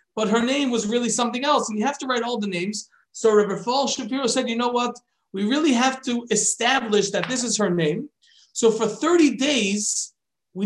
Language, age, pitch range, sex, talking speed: English, 40-59, 195-245 Hz, male, 215 wpm